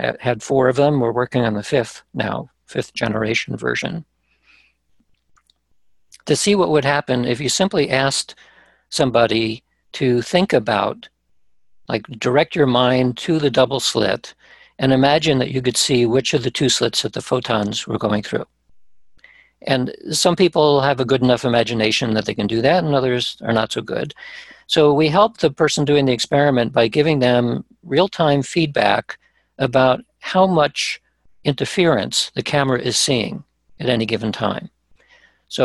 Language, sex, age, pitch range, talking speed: English, male, 50-69, 120-145 Hz, 160 wpm